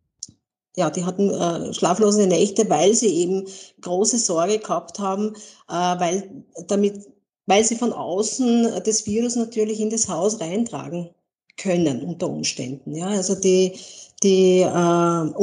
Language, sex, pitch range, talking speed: German, female, 185-215 Hz, 135 wpm